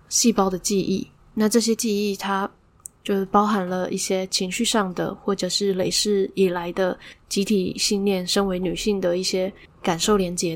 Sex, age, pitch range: female, 10-29, 185-210 Hz